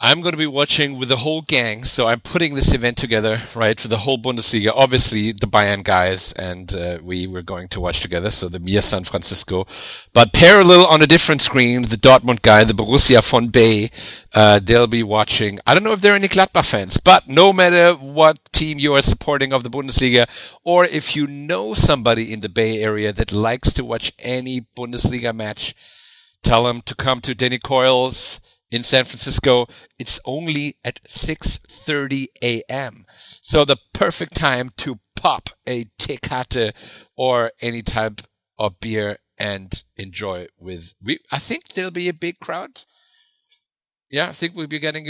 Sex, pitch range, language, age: male, 110-145 Hz, English, 50-69